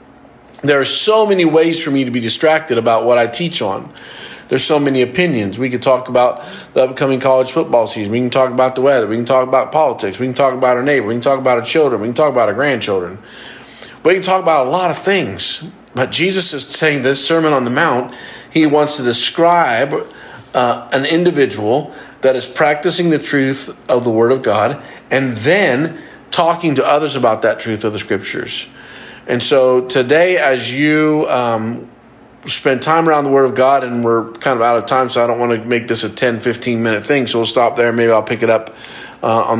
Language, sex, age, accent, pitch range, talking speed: English, male, 40-59, American, 120-145 Hz, 220 wpm